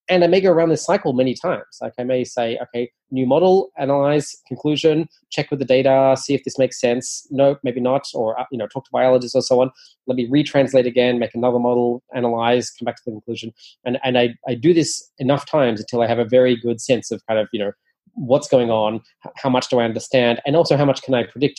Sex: male